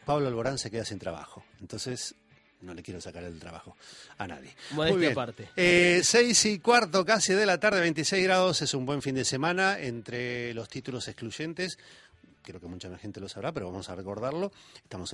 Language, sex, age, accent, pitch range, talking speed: Spanish, male, 30-49, Argentinian, 105-175 Hz, 195 wpm